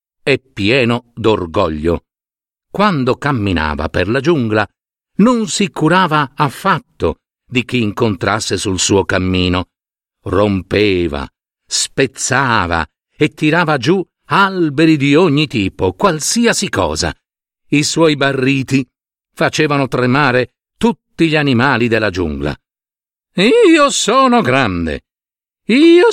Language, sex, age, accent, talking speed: Italian, male, 50-69, native, 100 wpm